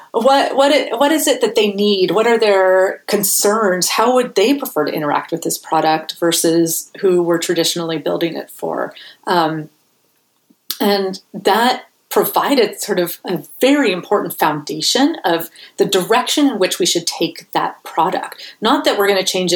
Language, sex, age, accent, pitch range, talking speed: English, female, 30-49, American, 165-210 Hz, 170 wpm